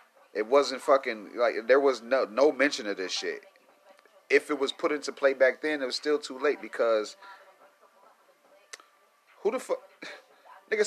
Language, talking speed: English, 165 wpm